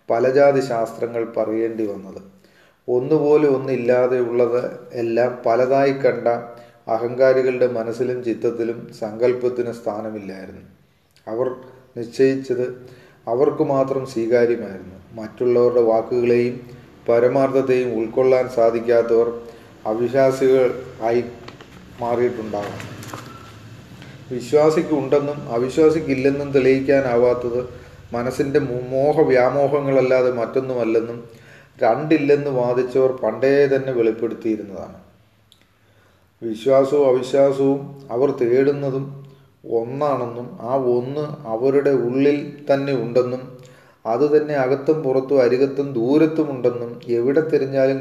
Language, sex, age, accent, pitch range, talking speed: Malayalam, male, 30-49, native, 115-135 Hz, 70 wpm